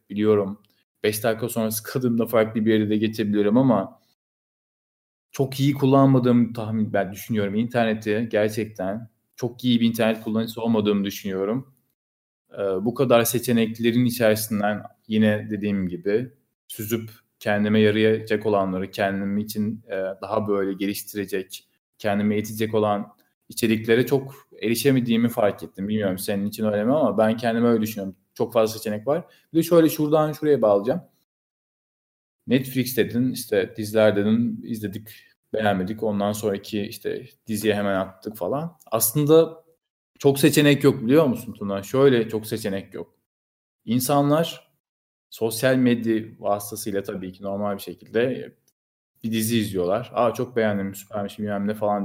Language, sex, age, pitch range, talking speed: Turkish, male, 30-49, 100-120 Hz, 130 wpm